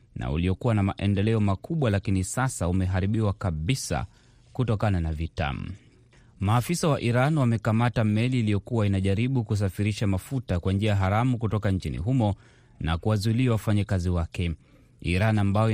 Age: 30-49